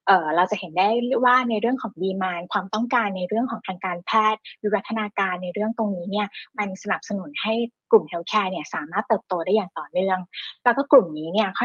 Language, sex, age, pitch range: Thai, female, 20-39, 180-225 Hz